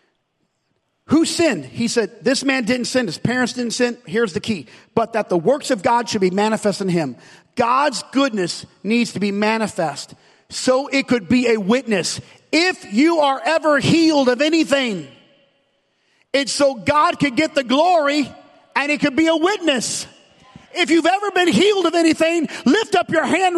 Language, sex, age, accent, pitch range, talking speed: English, male, 40-59, American, 250-340 Hz, 175 wpm